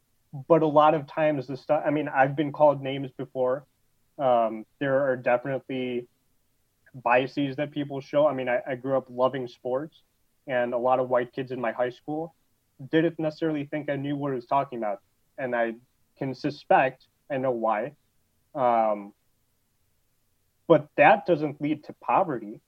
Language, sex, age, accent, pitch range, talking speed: English, male, 20-39, American, 120-145 Hz, 170 wpm